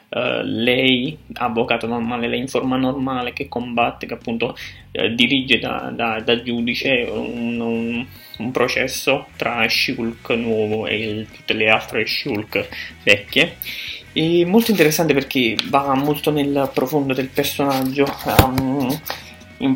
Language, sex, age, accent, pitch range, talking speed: Italian, male, 20-39, native, 120-140 Hz, 115 wpm